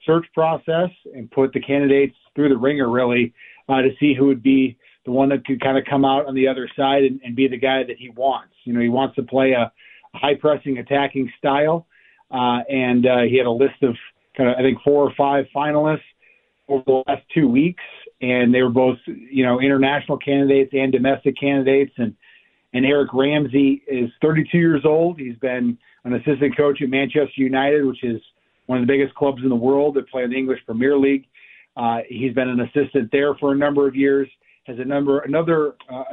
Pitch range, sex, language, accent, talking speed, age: 130-145 Hz, male, English, American, 215 wpm, 40-59